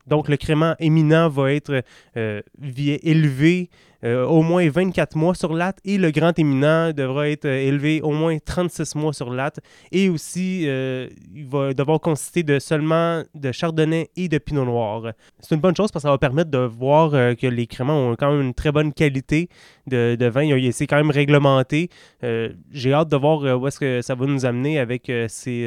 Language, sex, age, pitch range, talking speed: French, male, 20-39, 125-155 Hz, 210 wpm